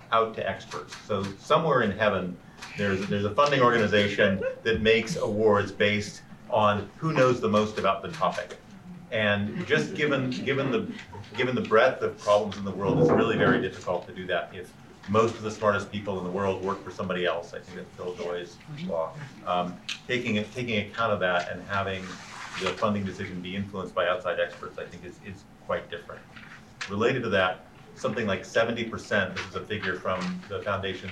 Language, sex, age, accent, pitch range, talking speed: English, male, 40-59, American, 90-110 Hz, 185 wpm